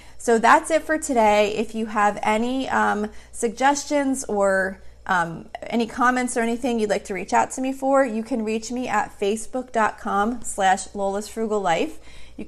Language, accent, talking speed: English, American, 175 wpm